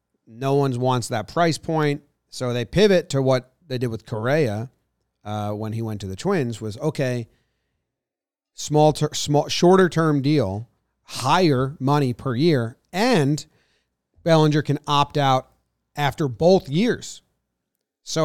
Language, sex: English, male